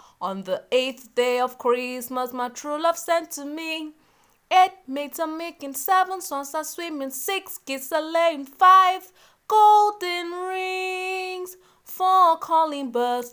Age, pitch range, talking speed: 20-39, 255-360 Hz, 135 wpm